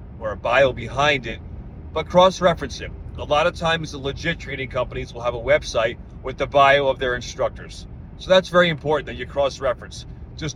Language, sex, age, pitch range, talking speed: English, male, 30-49, 120-165 Hz, 195 wpm